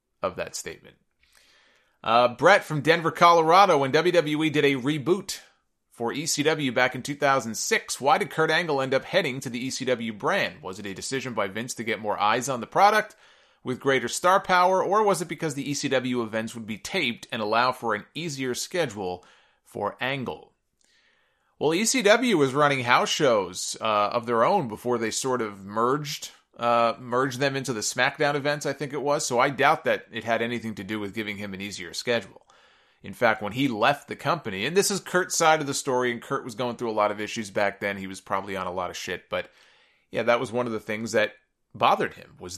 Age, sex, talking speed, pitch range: 30-49, male, 215 wpm, 110-145 Hz